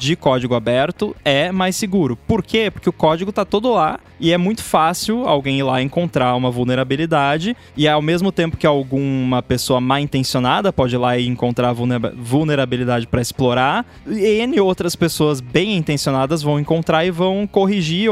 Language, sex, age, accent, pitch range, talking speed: Portuguese, male, 20-39, Brazilian, 125-170 Hz, 165 wpm